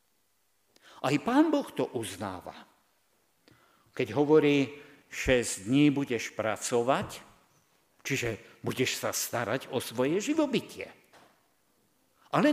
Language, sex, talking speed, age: Slovak, male, 90 wpm, 60-79